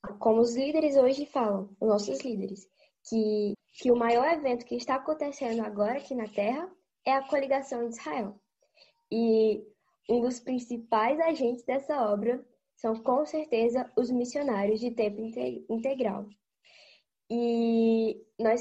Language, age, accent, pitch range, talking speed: Portuguese, 10-29, Brazilian, 220-275 Hz, 135 wpm